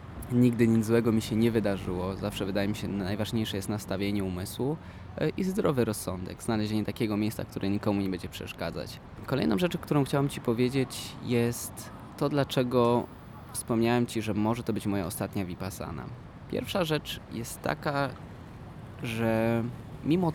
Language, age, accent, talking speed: Polish, 20-39, native, 145 wpm